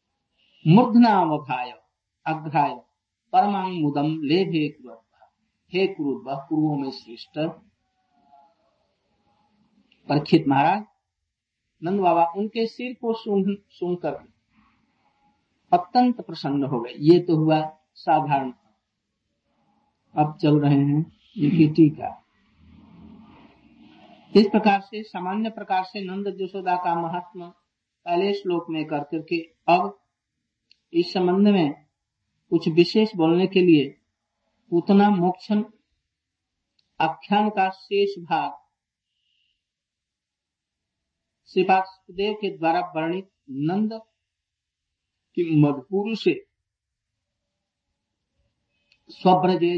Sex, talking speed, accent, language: male, 70 wpm, native, Hindi